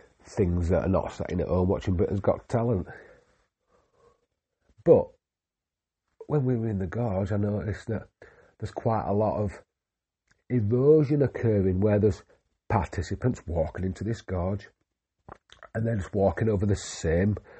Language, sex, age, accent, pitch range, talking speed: English, male, 40-59, British, 95-120 Hz, 145 wpm